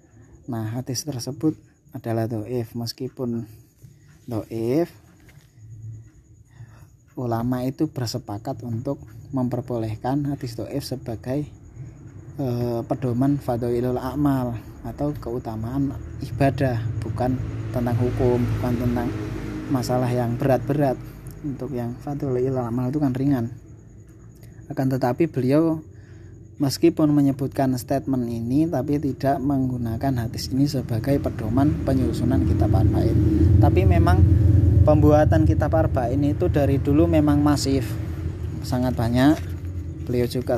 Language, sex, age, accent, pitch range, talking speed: Indonesian, male, 20-39, native, 115-135 Hz, 105 wpm